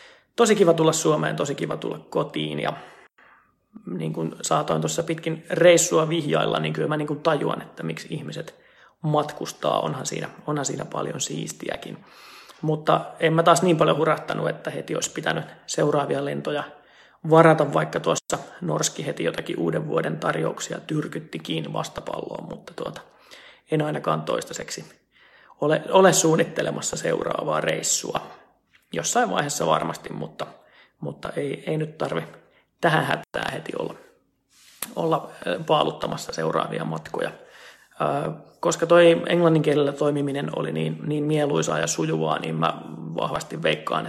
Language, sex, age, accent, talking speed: Finnish, male, 30-49, native, 125 wpm